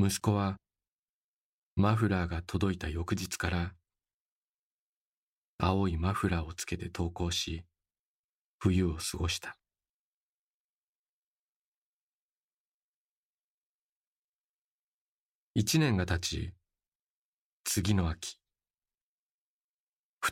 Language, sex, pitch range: Japanese, male, 85-100 Hz